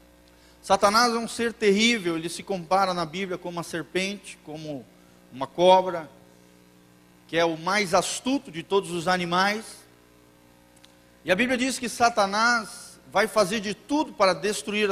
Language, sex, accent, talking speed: Portuguese, male, Brazilian, 150 wpm